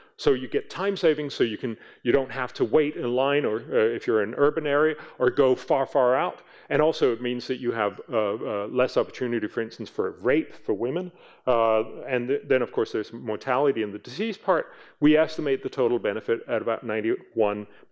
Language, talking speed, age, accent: English, 220 wpm, 40-59, American